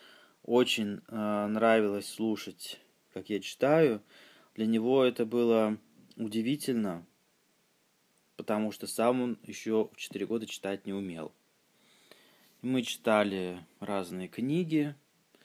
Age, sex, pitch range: 20-39, male, 105-120 Hz